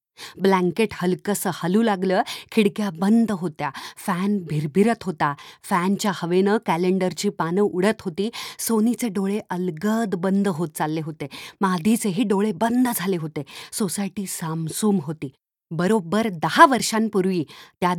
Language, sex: Marathi, female